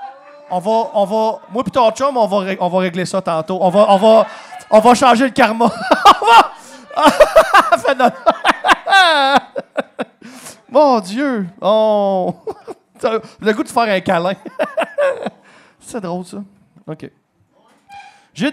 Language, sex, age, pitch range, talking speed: English, male, 30-49, 200-280 Hz, 125 wpm